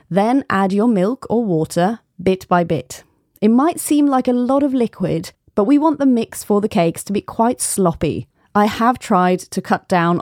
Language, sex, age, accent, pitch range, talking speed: English, female, 30-49, British, 175-235 Hz, 205 wpm